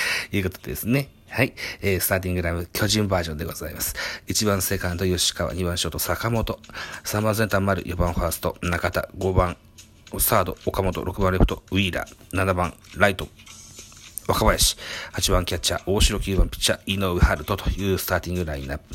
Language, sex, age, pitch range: Japanese, male, 40-59, 85-105 Hz